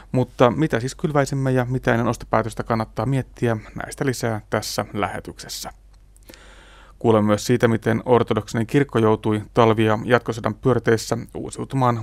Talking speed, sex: 125 wpm, male